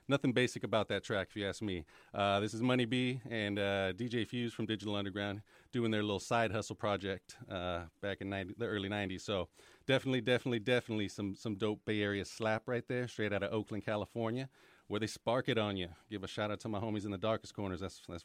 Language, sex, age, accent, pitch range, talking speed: English, male, 30-49, American, 100-120 Hz, 225 wpm